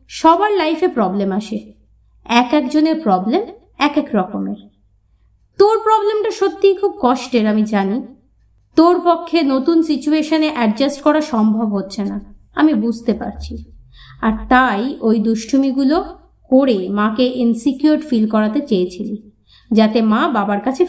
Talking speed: 125 wpm